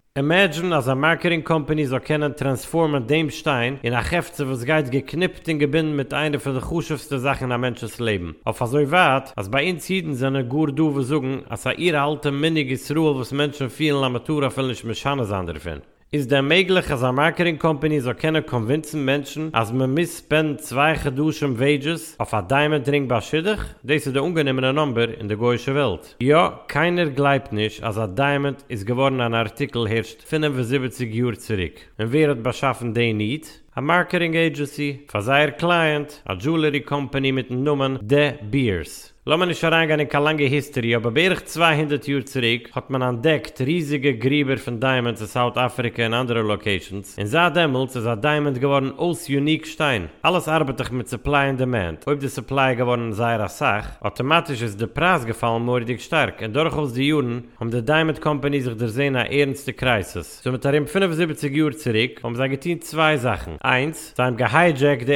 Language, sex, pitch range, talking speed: English, male, 120-155 Hz, 180 wpm